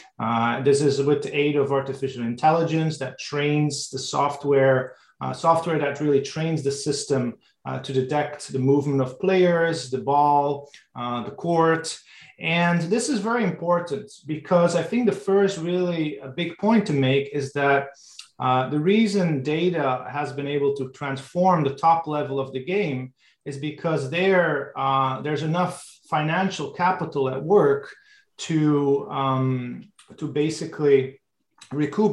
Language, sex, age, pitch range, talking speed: English, male, 30-49, 135-165 Hz, 150 wpm